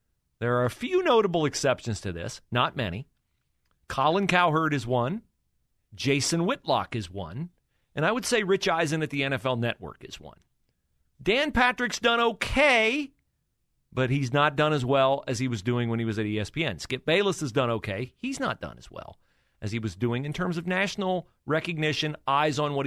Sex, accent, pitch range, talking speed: male, American, 115-175 Hz, 185 wpm